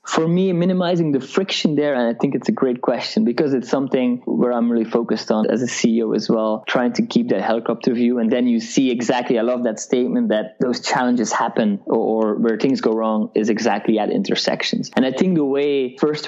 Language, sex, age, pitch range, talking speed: English, male, 20-39, 115-150 Hz, 225 wpm